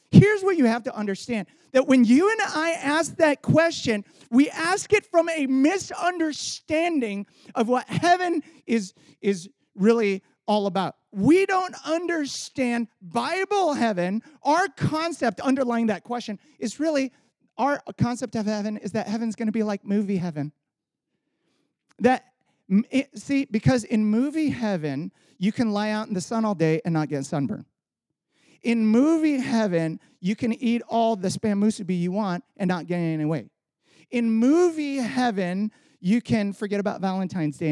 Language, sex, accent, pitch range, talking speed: English, male, American, 190-280 Hz, 155 wpm